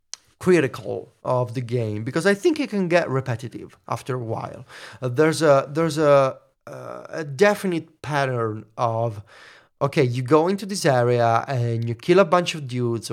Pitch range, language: 115-160 Hz, English